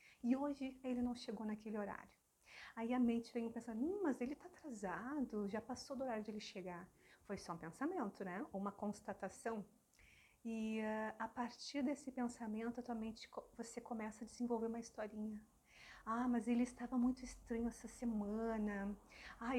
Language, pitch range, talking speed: Portuguese, 215-245 Hz, 165 wpm